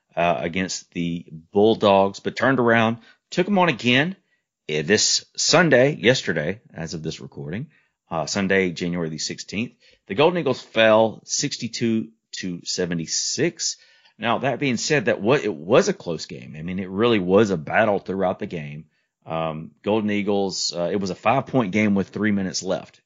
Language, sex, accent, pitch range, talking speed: English, male, American, 85-125 Hz, 170 wpm